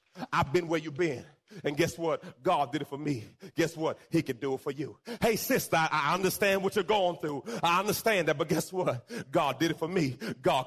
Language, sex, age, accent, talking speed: English, male, 40-59, American, 235 wpm